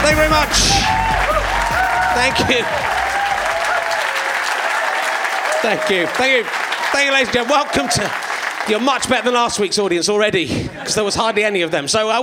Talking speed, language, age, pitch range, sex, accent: 165 wpm, English, 30-49, 185-250 Hz, male, British